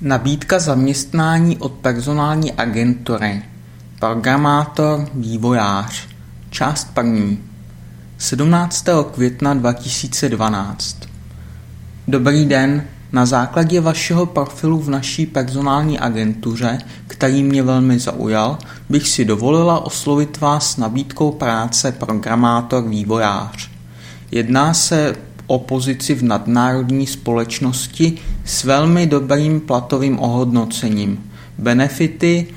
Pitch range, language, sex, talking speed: 110-145 Hz, Czech, male, 90 wpm